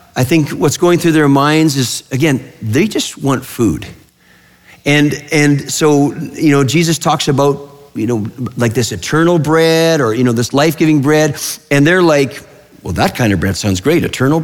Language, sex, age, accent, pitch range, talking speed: English, male, 50-69, American, 115-160 Hz, 185 wpm